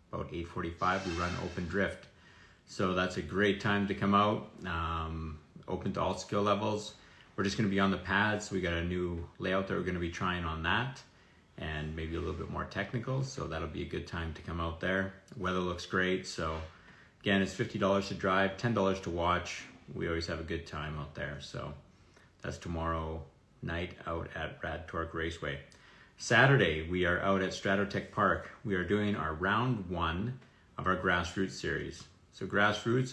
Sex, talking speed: male, 190 wpm